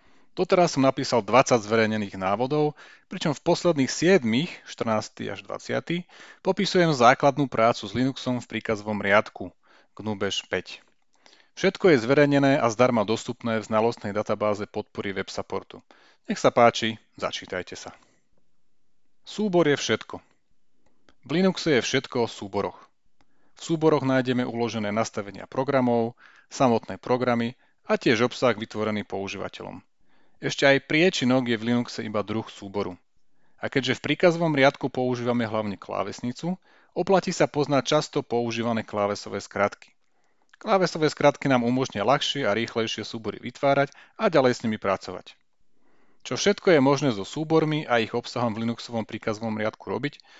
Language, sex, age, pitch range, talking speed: Slovak, male, 30-49, 110-145 Hz, 135 wpm